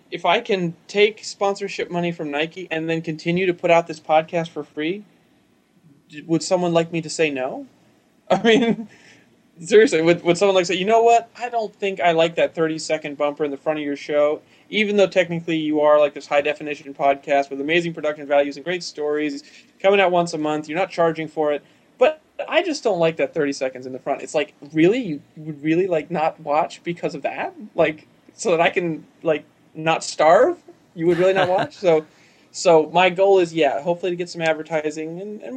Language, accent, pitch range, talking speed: English, American, 145-175 Hz, 210 wpm